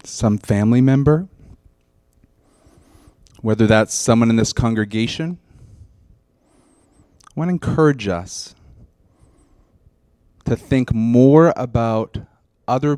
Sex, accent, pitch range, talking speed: male, American, 100-125 Hz, 90 wpm